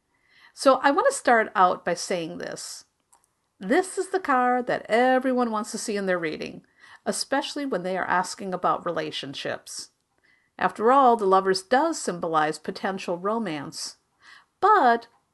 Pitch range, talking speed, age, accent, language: 185-255 Hz, 145 wpm, 50-69, American, English